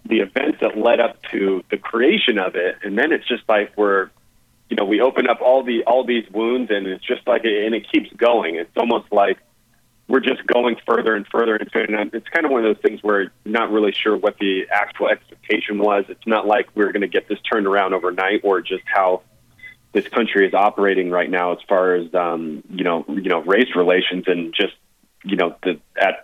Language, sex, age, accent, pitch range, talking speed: English, male, 30-49, American, 90-110 Hz, 225 wpm